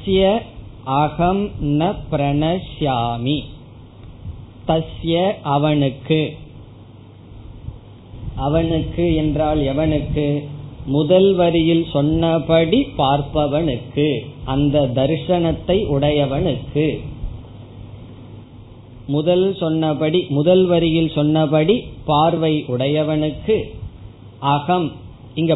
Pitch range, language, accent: 125-165 Hz, Tamil, native